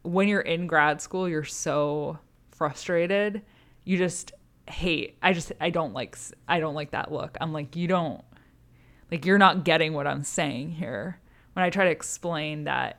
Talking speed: 180 wpm